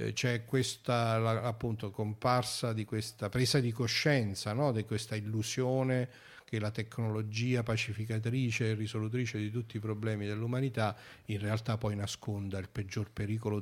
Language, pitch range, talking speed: Italian, 100-120 Hz, 135 wpm